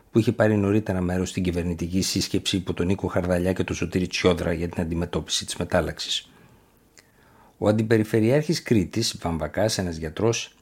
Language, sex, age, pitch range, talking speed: Greek, male, 50-69, 90-110 Hz, 155 wpm